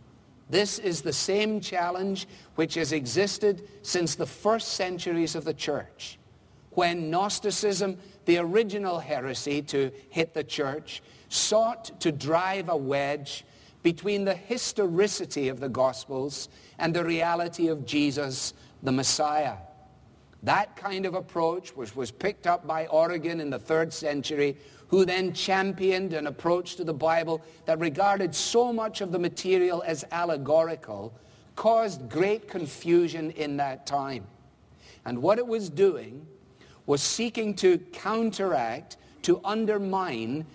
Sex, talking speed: male, 135 wpm